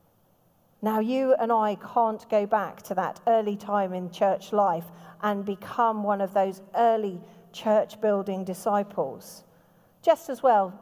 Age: 40-59